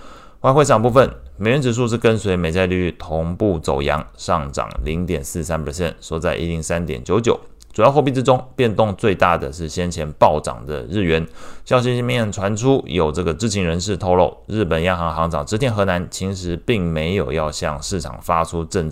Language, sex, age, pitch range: Chinese, male, 20-39, 80-100 Hz